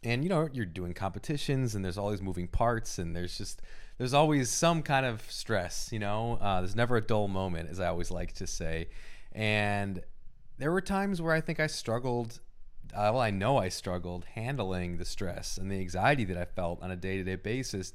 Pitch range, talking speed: 95-125 Hz, 210 wpm